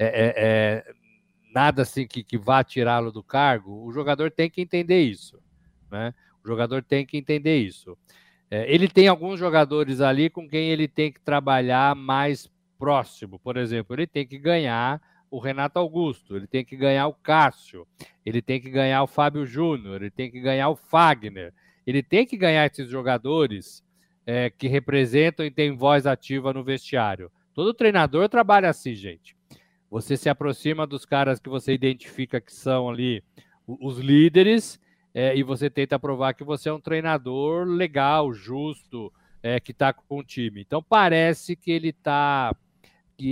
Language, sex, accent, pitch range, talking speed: Portuguese, male, Brazilian, 125-165 Hz, 165 wpm